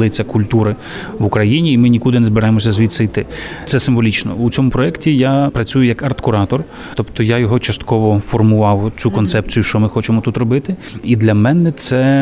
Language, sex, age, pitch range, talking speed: Ukrainian, male, 30-49, 110-130 Hz, 175 wpm